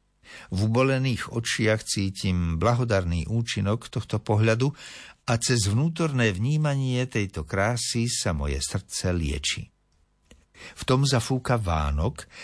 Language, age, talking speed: Slovak, 50-69, 105 wpm